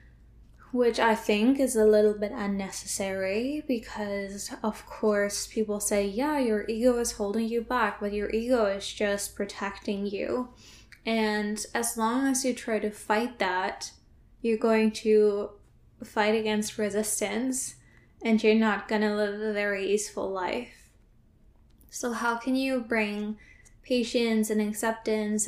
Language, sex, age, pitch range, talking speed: English, female, 10-29, 210-245 Hz, 140 wpm